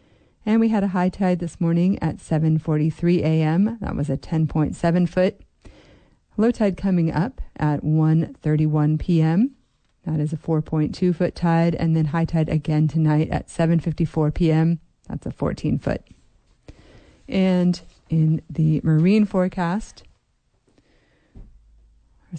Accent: American